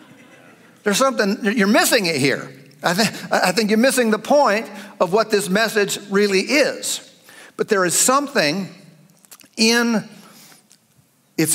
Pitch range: 135-195 Hz